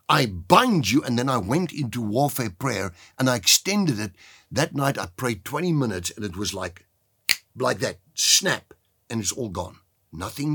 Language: English